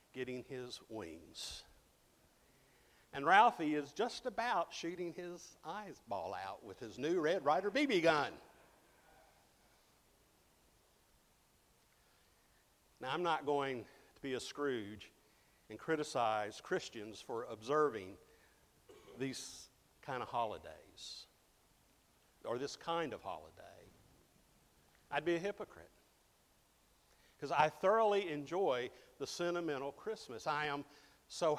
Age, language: 50-69, English